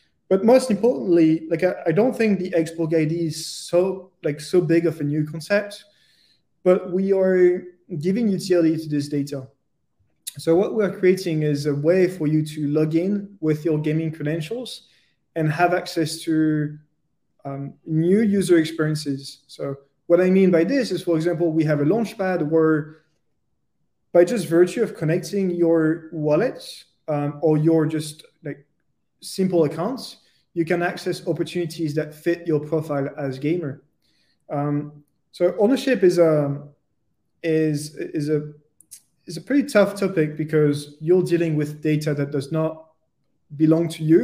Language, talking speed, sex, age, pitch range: English, 155 wpm, male, 20-39, 150-180 Hz